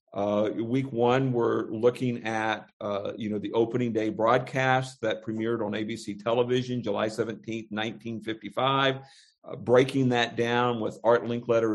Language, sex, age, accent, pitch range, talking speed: English, male, 50-69, American, 110-130 Hz, 145 wpm